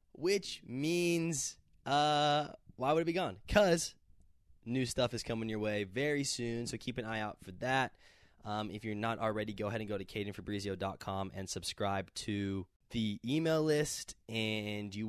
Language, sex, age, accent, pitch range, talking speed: English, male, 20-39, American, 100-135 Hz, 170 wpm